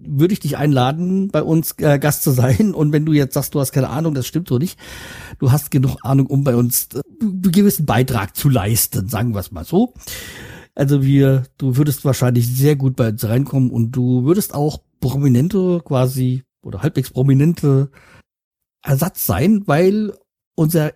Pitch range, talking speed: 125-155 Hz, 185 wpm